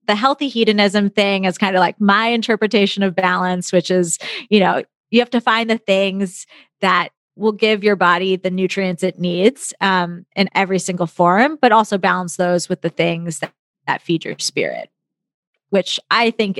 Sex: female